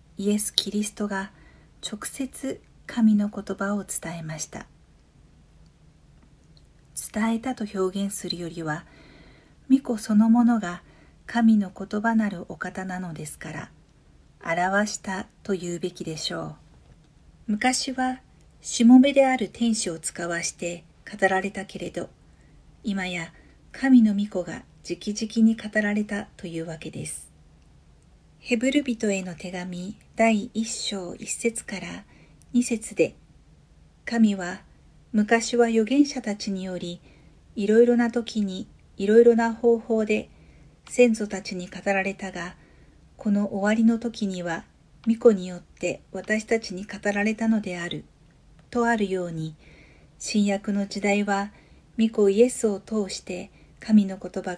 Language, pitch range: Japanese, 180-225 Hz